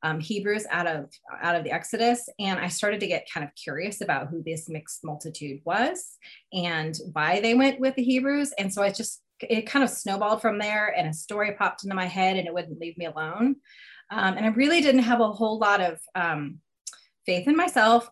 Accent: American